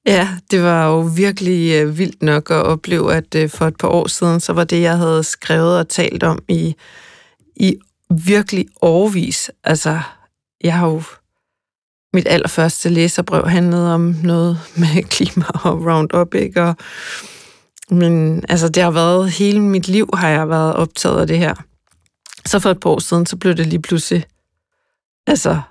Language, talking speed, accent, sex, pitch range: Danish, 165 wpm, native, female, 165-190 Hz